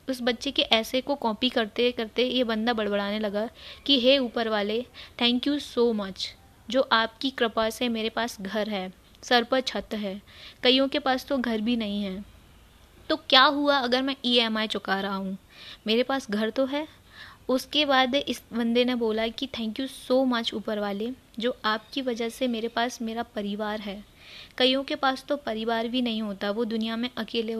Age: 20-39